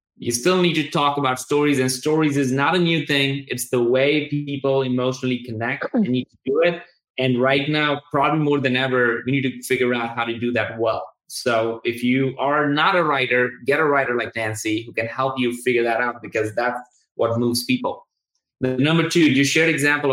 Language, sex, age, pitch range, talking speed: English, male, 20-39, 120-145 Hz, 220 wpm